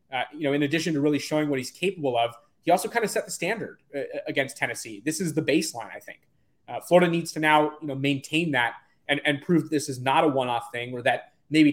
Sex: male